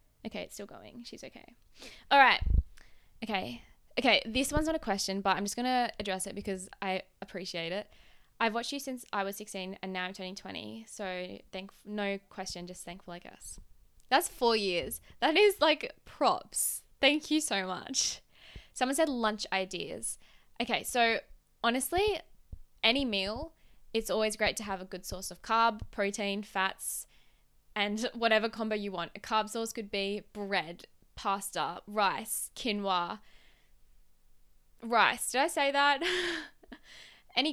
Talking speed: 155 wpm